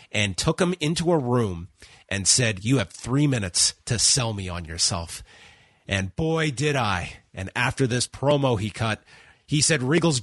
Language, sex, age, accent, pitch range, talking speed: English, male, 30-49, American, 105-140 Hz, 175 wpm